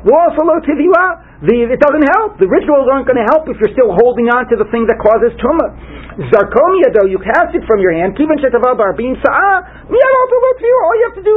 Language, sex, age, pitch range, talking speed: English, male, 40-59, 175-275 Hz, 180 wpm